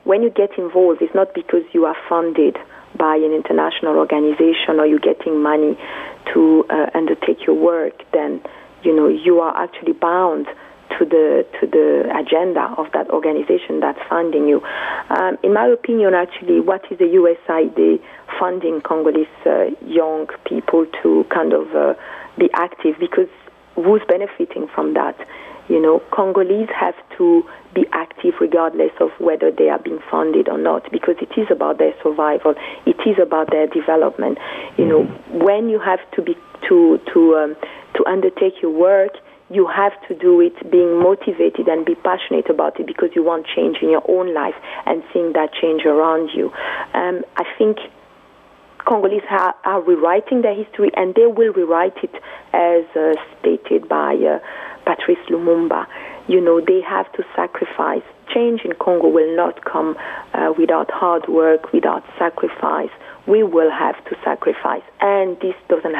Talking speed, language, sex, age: 165 wpm, English, female, 40-59